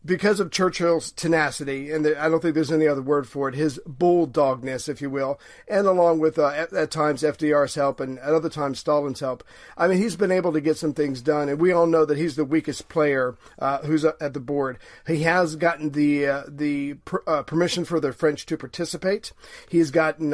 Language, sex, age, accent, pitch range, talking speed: English, male, 50-69, American, 150-175 Hz, 220 wpm